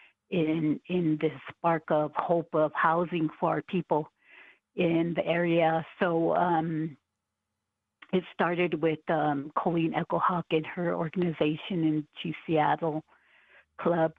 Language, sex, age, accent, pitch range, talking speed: English, female, 50-69, American, 155-170 Hz, 125 wpm